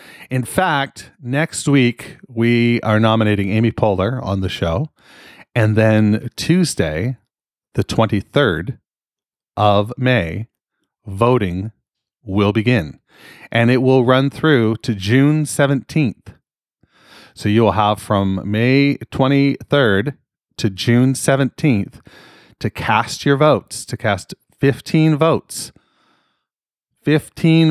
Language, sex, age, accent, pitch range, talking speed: English, male, 30-49, American, 105-140 Hz, 105 wpm